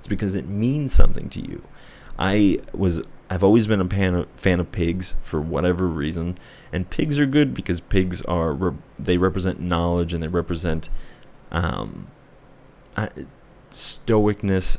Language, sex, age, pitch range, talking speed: English, male, 30-49, 85-100 Hz, 140 wpm